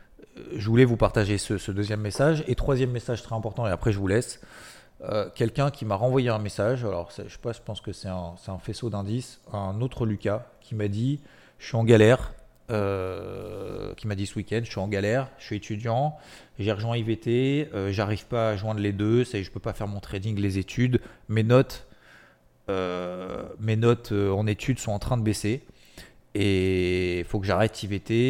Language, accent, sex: French, French, male